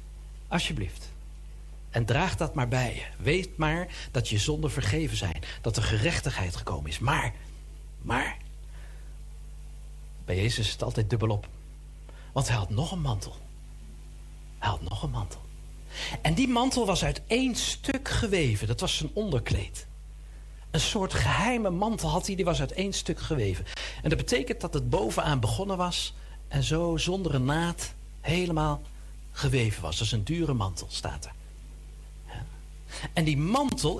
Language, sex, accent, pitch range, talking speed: Dutch, male, Dutch, 100-170 Hz, 155 wpm